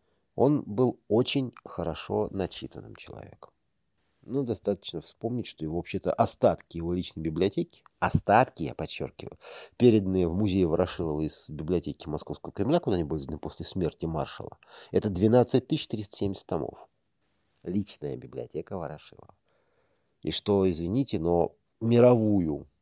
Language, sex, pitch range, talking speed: Russian, male, 80-105 Hz, 115 wpm